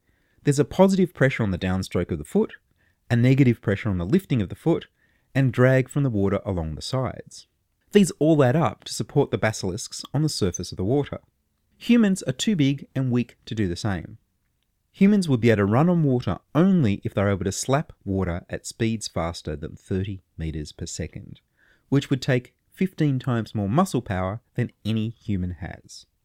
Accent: Australian